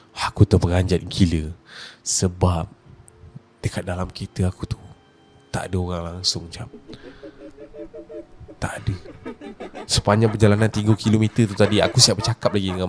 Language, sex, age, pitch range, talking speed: Malay, male, 20-39, 95-115 Hz, 120 wpm